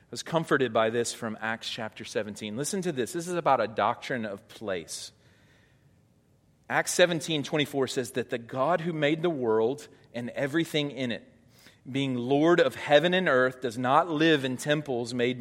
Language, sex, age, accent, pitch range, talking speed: English, male, 40-59, American, 125-155 Hz, 180 wpm